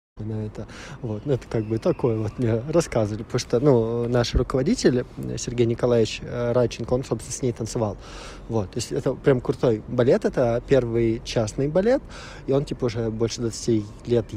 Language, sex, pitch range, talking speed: Russian, male, 115-135 Hz, 175 wpm